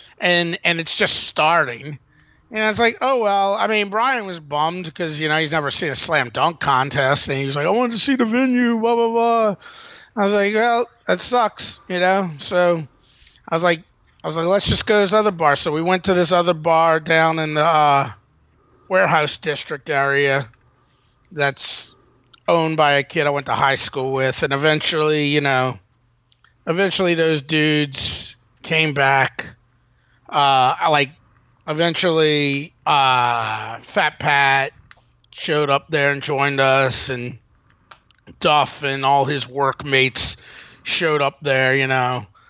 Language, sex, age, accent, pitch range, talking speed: English, male, 30-49, American, 135-180 Hz, 170 wpm